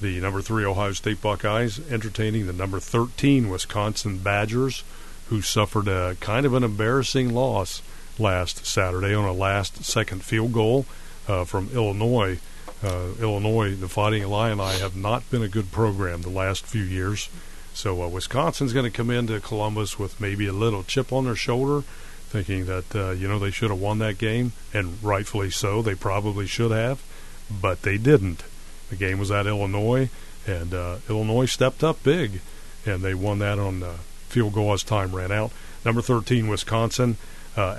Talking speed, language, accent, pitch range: 180 wpm, English, American, 95-115 Hz